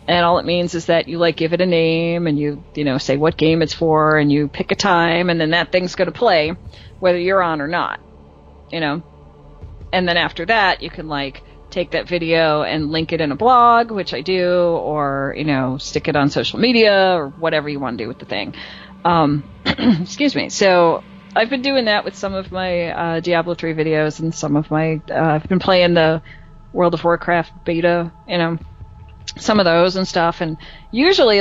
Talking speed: 220 wpm